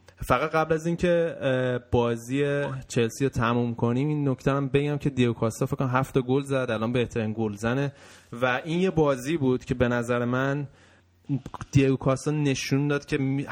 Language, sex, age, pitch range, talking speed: Persian, male, 20-39, 115-135 Hz, 160 wpm